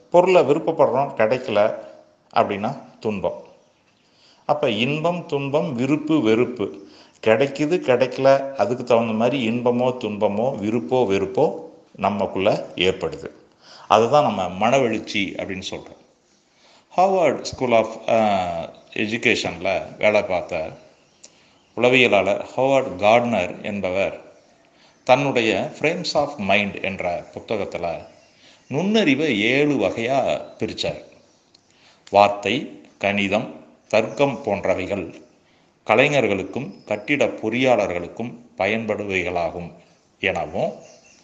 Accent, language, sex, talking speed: native, Tamil, male, 80 wpm